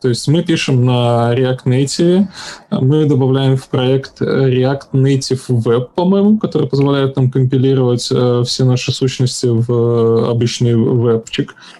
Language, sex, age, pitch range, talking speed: Russian, male, 10-29, 120-140 Hz, 125 wpm